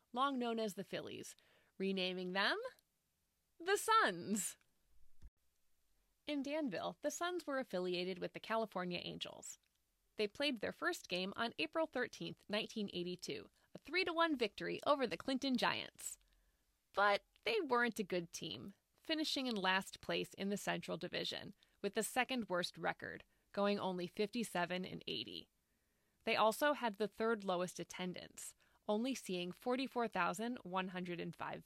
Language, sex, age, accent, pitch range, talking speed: English, female, 20-39, American, 185-280 Hz, 125 wpm